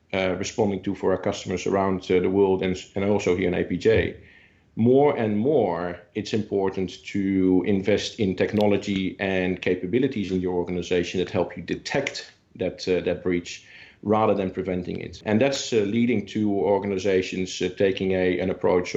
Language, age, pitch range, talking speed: English, 50-69, 90-110 Hz, 170 wpm